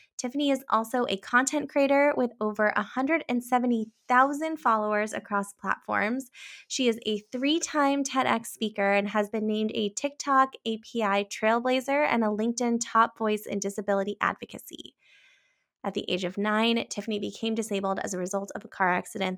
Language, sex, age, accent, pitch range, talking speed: English, female, 20-39, American, 195-245 Hz, 150 wpm